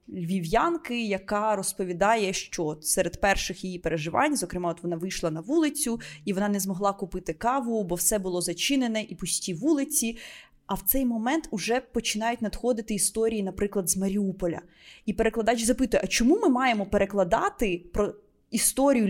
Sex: female